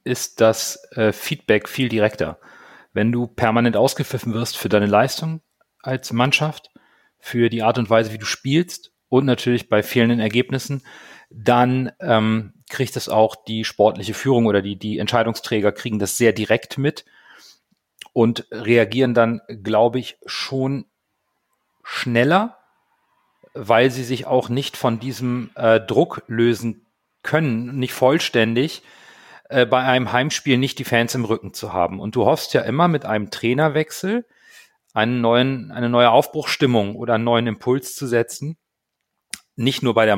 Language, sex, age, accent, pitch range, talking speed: German, male, 40-59, German, 110-130 Hz, 145 wpm